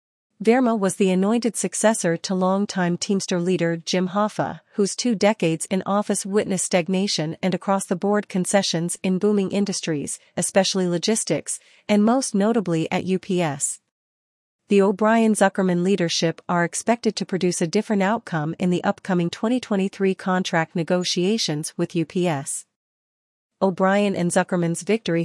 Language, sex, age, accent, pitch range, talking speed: English, female, 40-59, American, 175-200 Hz, 125 wpm